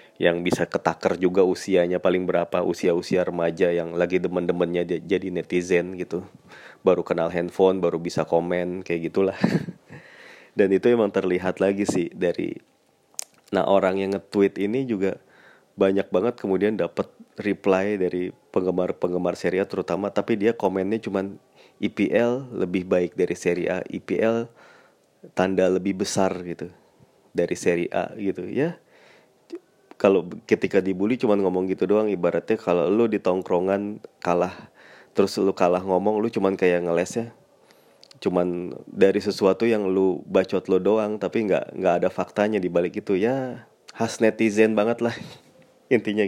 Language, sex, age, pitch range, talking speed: Indonesian, male, 20-39, 90-105 Hz, 140 wpm